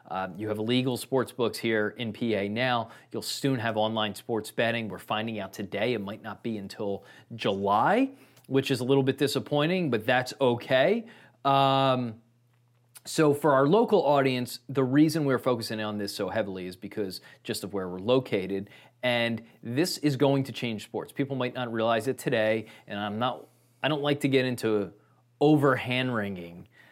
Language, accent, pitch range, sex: English, American, 110-135 Hz, male